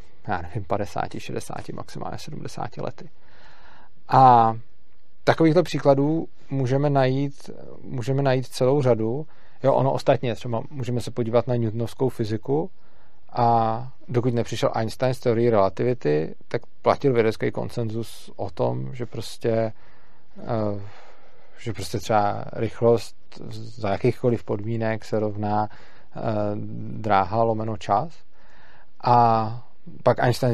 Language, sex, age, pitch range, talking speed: Czech, male, 40-59, 110-130 Hz, 105 wpm